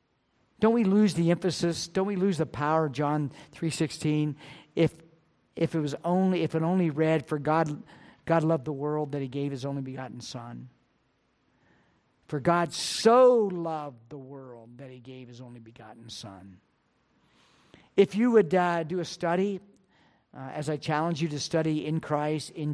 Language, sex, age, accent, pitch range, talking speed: English, male, 50-69, American, 145-175 Hz, 165 wpm